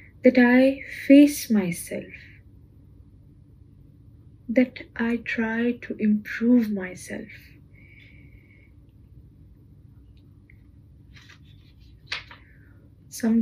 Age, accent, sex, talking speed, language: 20-39, Indian, female, 50 wpm, English